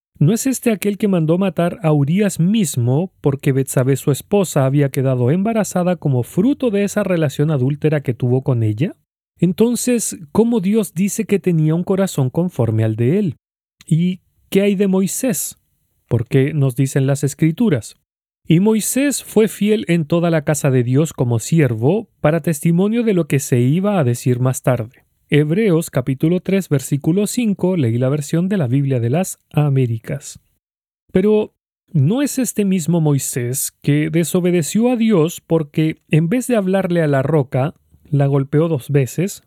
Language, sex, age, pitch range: Spanish, male, 40-59, 140-195 Hz